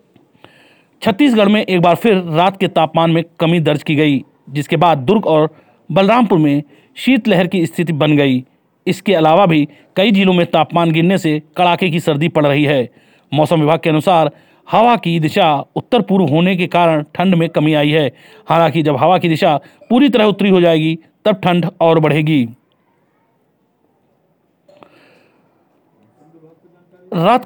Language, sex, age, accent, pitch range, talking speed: Hindi, male, 40-59, native, 150-185 Hz, 155 wpm